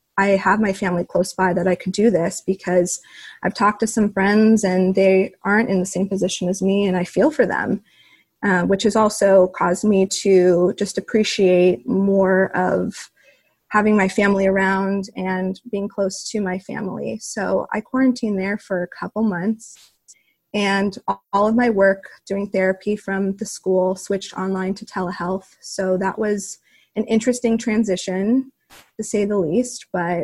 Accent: American